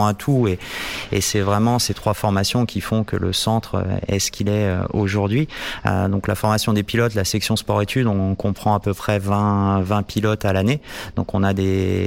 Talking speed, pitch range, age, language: 210 wpm, 90-105 Hz, 30-49, French